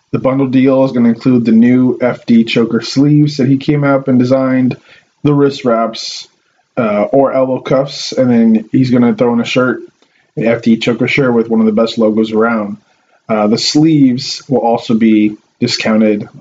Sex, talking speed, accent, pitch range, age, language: male, 190 wpm, American, 110-135 Hz, 20-39, English